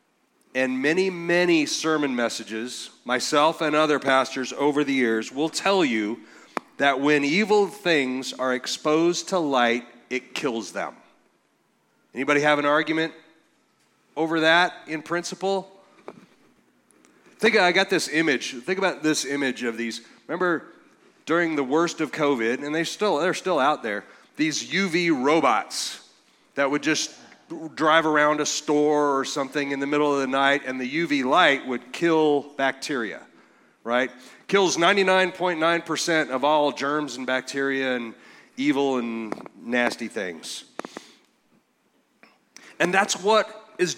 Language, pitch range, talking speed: English, 130-170 Hz, 135 wpm